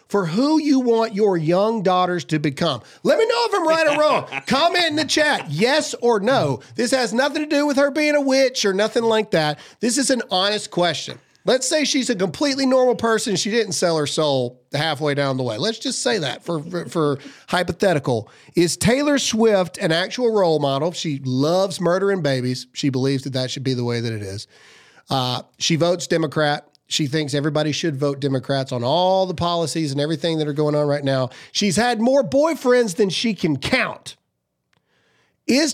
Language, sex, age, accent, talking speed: English, male, 40-59, American, 200 wpm